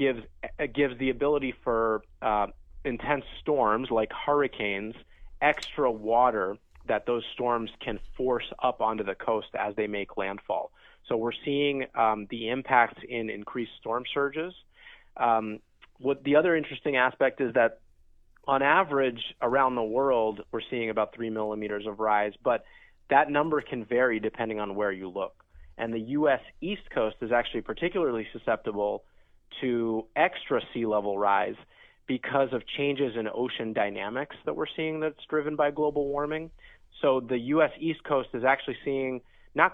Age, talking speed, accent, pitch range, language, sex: 30-49, 155 wpm, American, 110-145 Hz, English, male